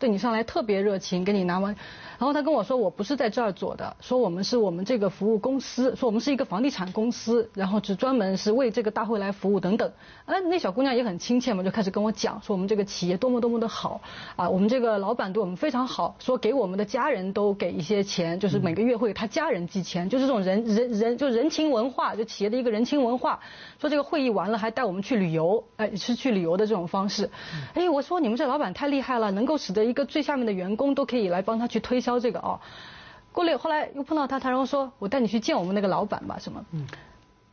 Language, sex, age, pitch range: Chinese, female, 30-49, 205-275 Hz